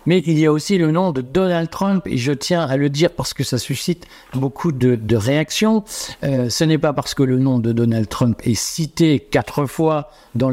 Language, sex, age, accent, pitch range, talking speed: French, male, 60-79, French, 125-160 Hz, 230 wpm